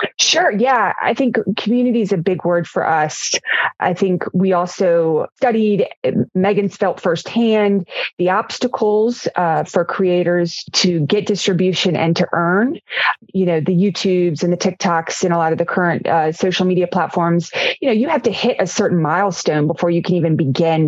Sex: female